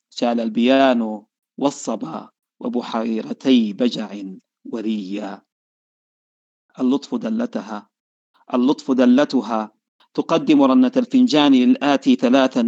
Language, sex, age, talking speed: Arabic, male, 40-59, 70 wpm